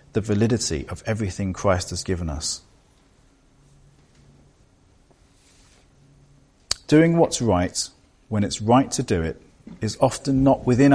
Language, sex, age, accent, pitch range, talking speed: English, male, 40-59, British, 95-130 Hz, 115 wpm